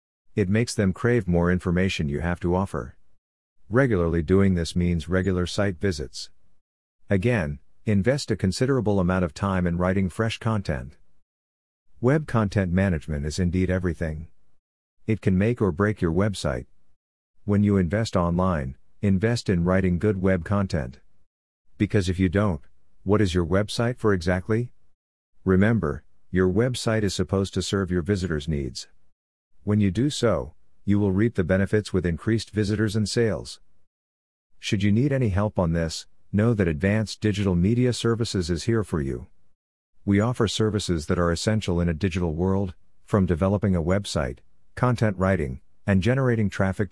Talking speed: 155 wpm